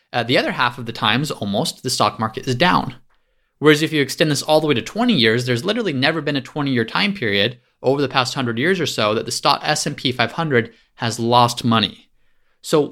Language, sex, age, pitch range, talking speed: English, male, 20-39, 120-155 Hz, 230 wpm